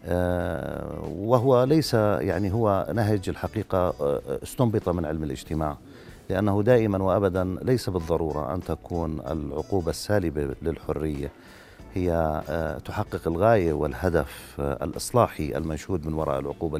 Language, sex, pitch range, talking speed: Arabic, male, 75-100 Hz, 105 wpm